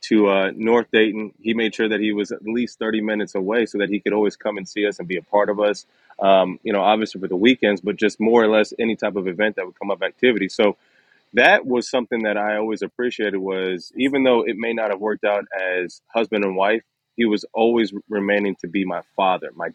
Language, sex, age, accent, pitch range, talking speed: English, male, 30-49, American, 100-115 Hz, 245 wpm